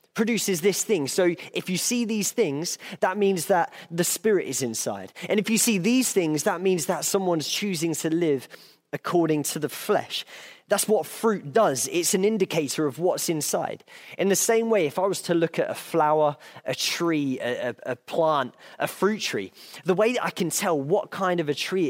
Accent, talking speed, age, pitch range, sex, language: British, 205 wpm, 20-39, 145-200 Hz, male, English